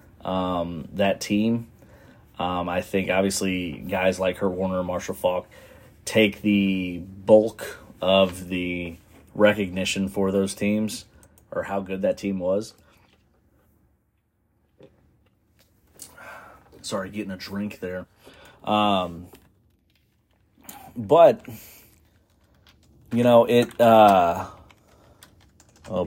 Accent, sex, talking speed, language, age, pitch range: American, male, 95 wpm, English, 30-49, 90-105 Hz